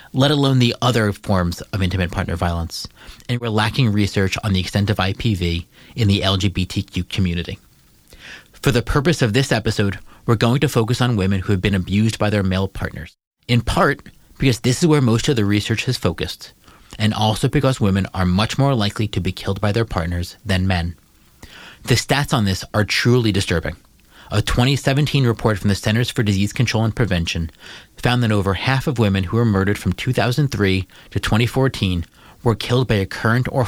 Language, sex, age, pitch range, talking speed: English, male, 30-49, 95-125 Hz, 190 wpm